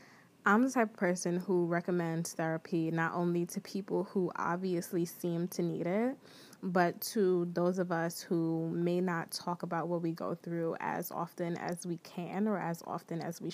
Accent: American